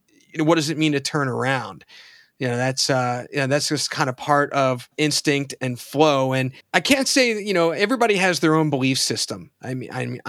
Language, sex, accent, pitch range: English, male, American, 130-155 Hz